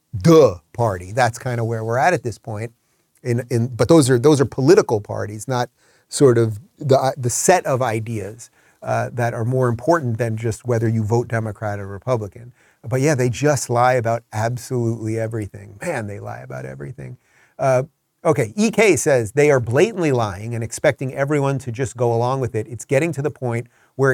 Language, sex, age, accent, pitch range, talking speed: English, male, 30-49, American, 115-150 Hz, 190 wpm